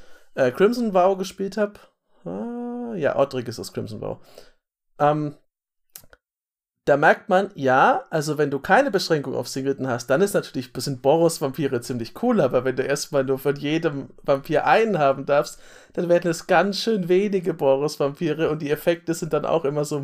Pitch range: 135-180 Hz